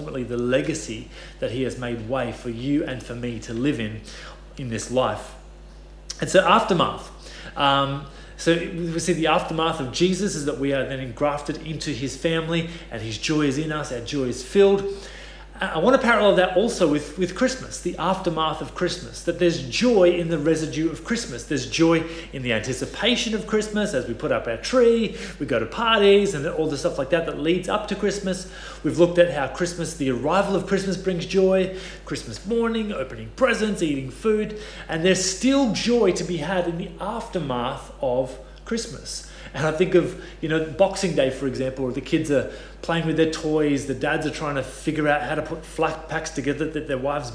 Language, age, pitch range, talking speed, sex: English, 30-49, 140-185 Hz, 205 wpm, male